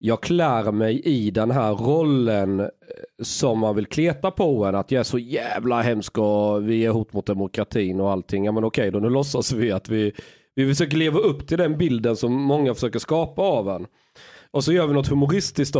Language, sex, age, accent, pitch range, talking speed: Swedish, male, 30-49, native, 105-145 Hz, 210 wpm